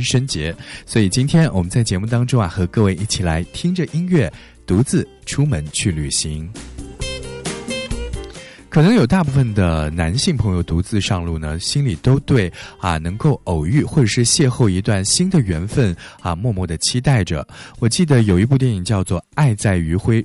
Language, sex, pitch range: Chinese, male, 85-130 Hz